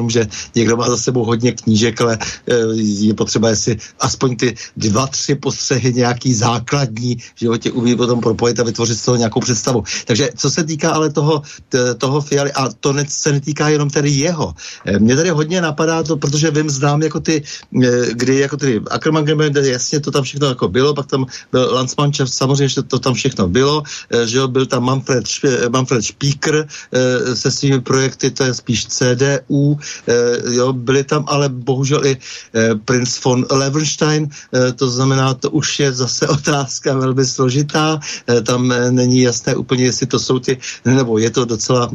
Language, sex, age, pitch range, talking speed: Slovak, male, 60-79, 120-140 Hz, 170 wpm